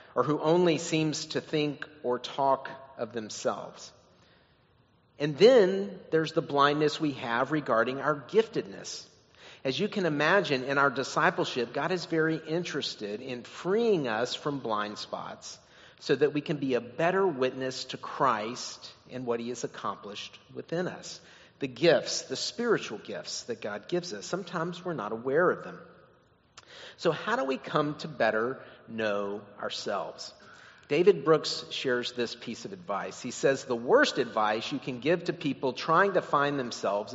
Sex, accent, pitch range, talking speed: male, American, 120-165 Hz, 160 wpm